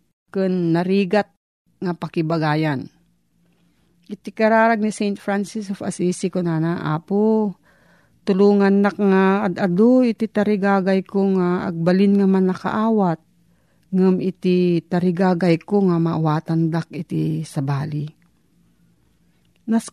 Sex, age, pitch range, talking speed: female, 40-59, 170-210 Hz, 100 wpm